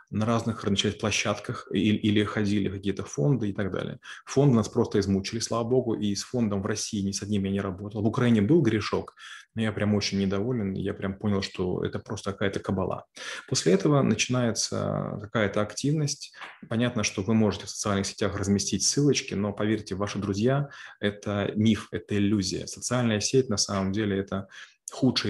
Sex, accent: male, native